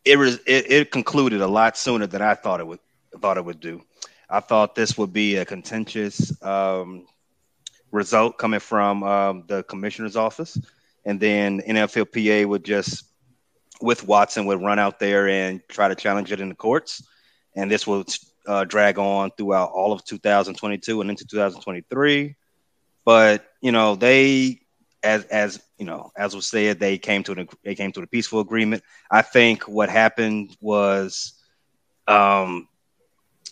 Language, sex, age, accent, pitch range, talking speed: English, male, 30-49, American, 100-115 Hz, 165 wpm